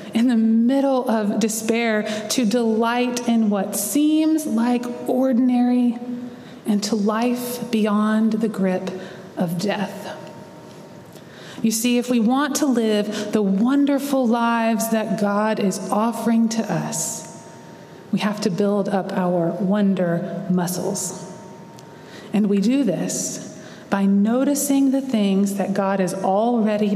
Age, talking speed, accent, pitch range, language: 20-39, 125 wpm, American, 190-235 Hz, English